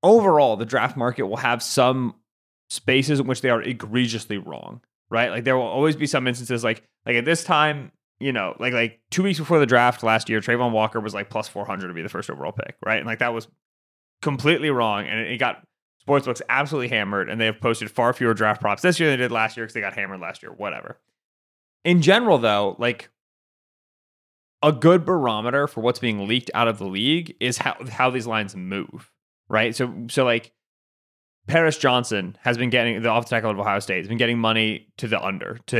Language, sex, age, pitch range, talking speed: English, male, 30-49, 110-145 Hz, 215 wpm